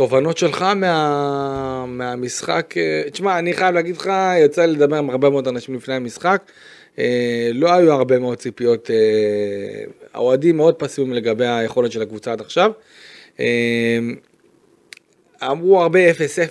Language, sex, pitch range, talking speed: Hebrew, male, 120-165 Hz, 125 wpm